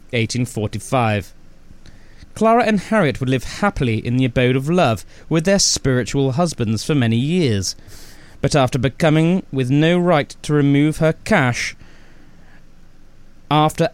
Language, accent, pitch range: English, British, 110-150 Hz